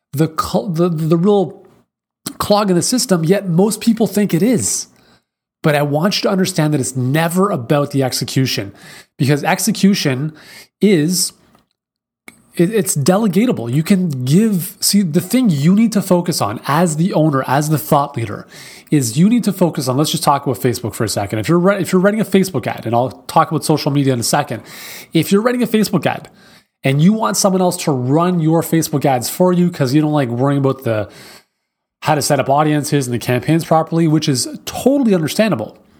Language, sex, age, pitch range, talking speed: English, male, 30-49, 145-195 Hz, 195 wpm